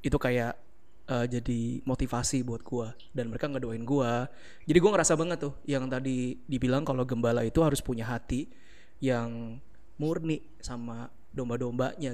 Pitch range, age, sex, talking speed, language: 120-145 Hz, 20-39, male, 145 wpm, Indonesian